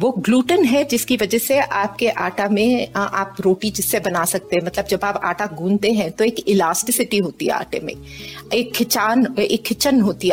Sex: female